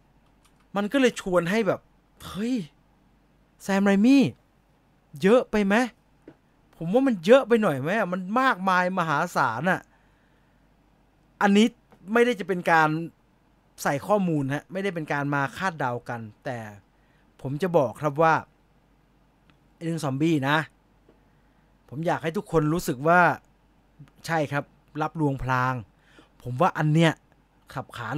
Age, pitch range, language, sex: 20-39, 140-180 Hz, English, male